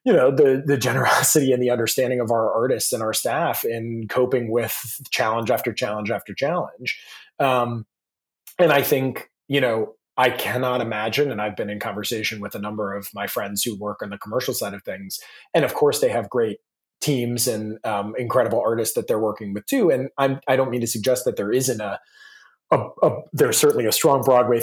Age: 30-49